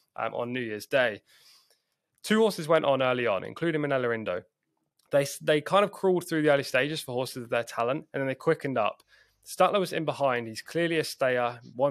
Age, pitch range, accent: 20-39, 120-150 Hz, British